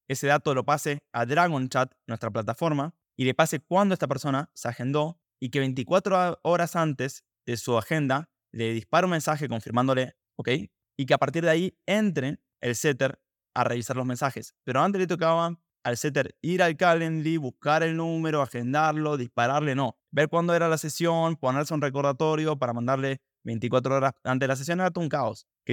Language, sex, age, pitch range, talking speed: Spanish, male, 20-39, 125-160 Hz, 185 wpm